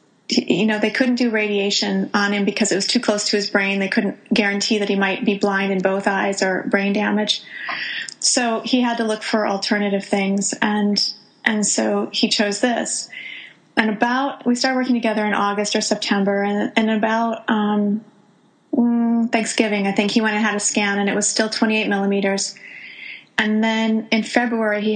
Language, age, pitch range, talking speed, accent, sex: English, 30-49, 200-230 Hz, 190 wpm, American, female